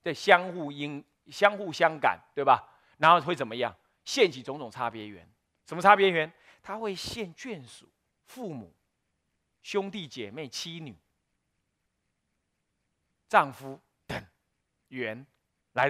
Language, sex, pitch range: Chinese, male, 115-170 Hz